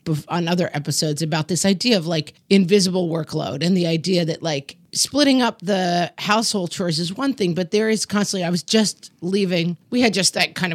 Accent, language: American, English